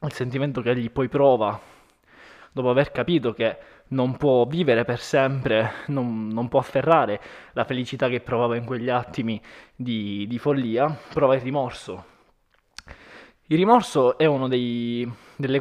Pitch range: 125-160 Hz